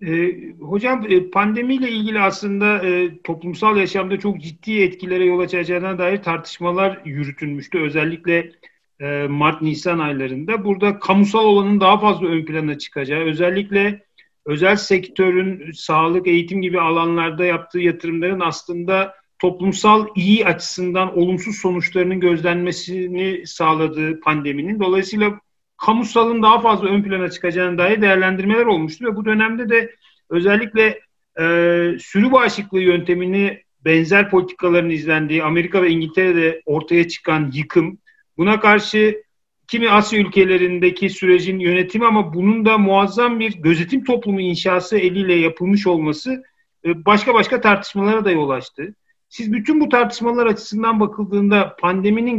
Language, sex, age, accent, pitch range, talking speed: Turkish, male, 50-69, native, 170-210 Hz, 115 wpm